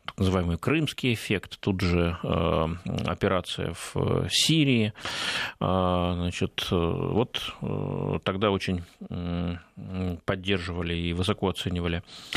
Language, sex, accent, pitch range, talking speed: Russian, male, native, 90-115 Hz, 80 wpm